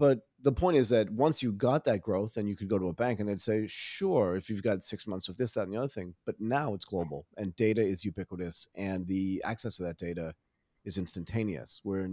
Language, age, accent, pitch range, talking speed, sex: English, 30-49, American, 90-115 Hz, 250 wpm, male